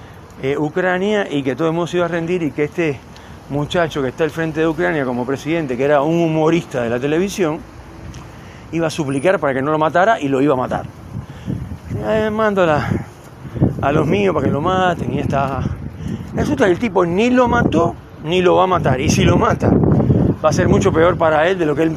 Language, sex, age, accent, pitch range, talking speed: Spanish, male, 40-59, Argentinian, 135-195 Hz, 220 wpm